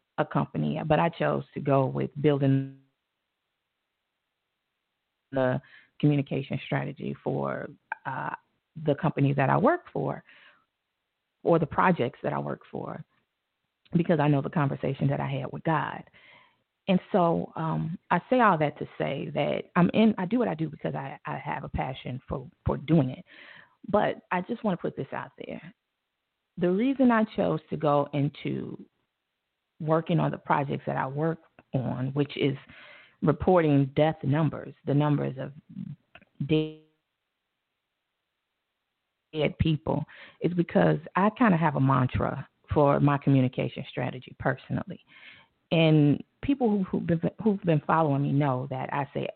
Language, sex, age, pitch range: English, female, 30-49, 140-195 Hz